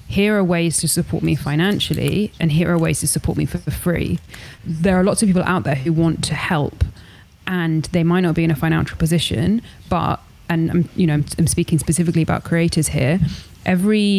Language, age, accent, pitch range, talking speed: English, 20-39, British, 155-175 Hz, 200 wpm